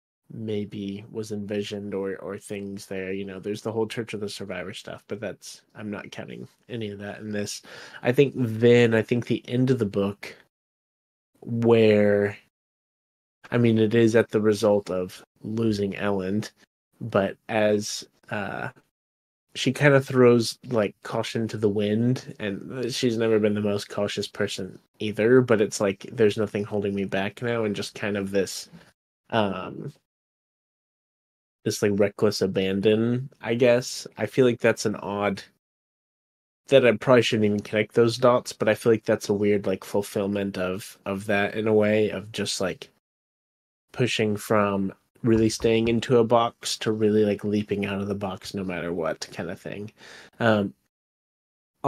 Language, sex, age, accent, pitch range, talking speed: English, male, 20-39, American, 100-115 Hz, 165 wpm